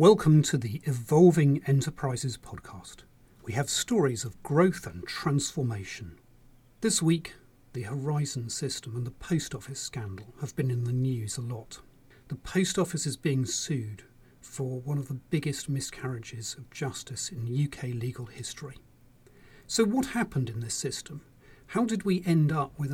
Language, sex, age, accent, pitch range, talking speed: English, male, 40-59, British, 125-155 Hz, 155 wpm